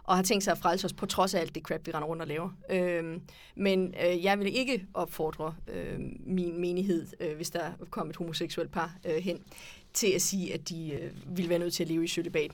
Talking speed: 245 wpm